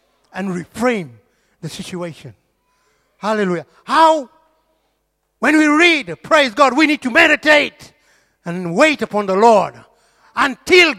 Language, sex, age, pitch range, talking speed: English, male, 50-69, 220-320 Hz, 115 wpm